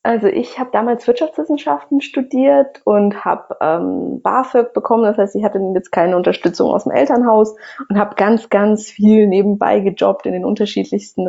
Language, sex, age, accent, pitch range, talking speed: German, female, 20-39, German, 195-245 Hz, 160 wpm